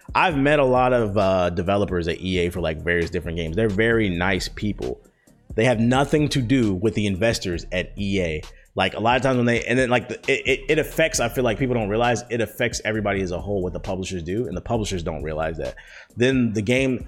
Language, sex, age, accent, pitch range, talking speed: English, male, 30-49, American, 90-120 Hz, 230 wpm